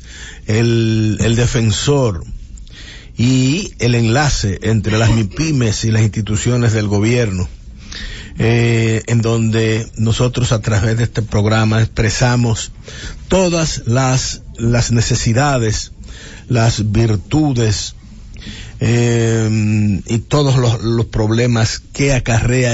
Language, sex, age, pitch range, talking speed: English, male, 50-69, 105-120 Hz, 100 wpm